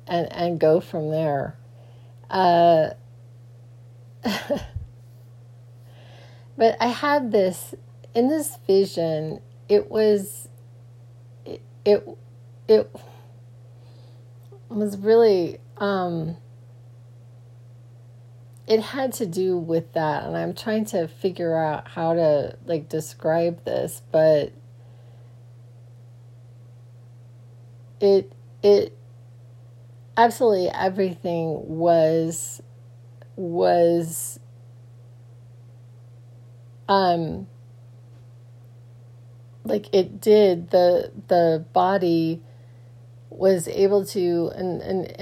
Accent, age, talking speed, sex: American, 30-49, 75 wpm, female